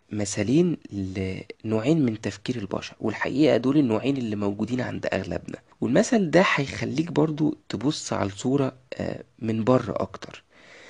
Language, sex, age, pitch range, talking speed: Arabic, male, 20-39, 110-155 Hz, 120 wpm